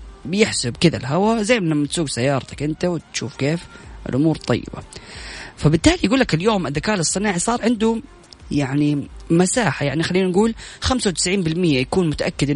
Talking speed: 135 wpm